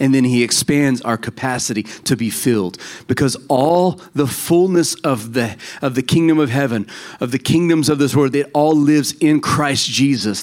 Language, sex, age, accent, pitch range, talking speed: English, male, 40-59, American, 130-160 Hz, 180 wpm